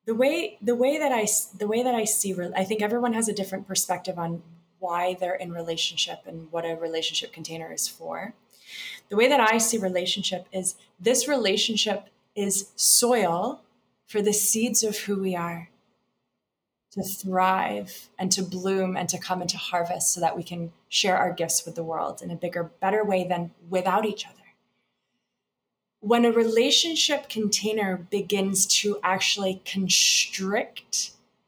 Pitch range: 180-215 Hz